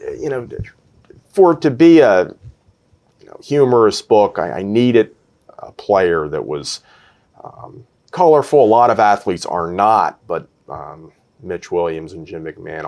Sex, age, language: male, 40-59, English